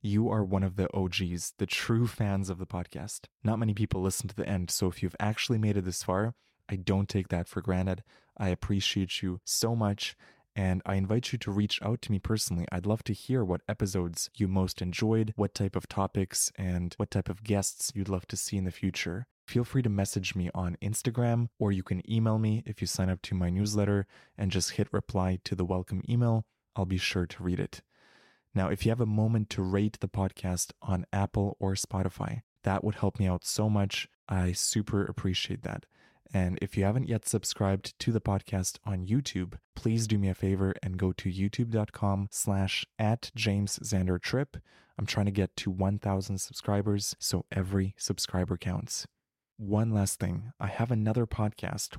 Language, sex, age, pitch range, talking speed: English, male, 20-39, 95-110 Hz, 200 wpm